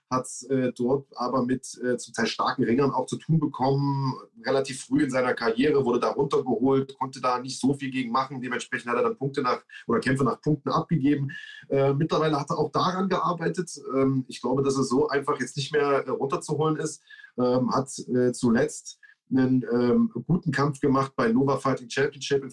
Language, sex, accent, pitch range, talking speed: German, male, German, 125-140 Hz, 200 wpm